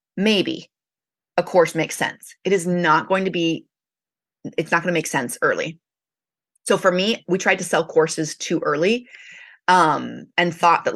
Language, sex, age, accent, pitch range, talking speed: English, female, 30-49, American, 175-250 Hz, 170 wpm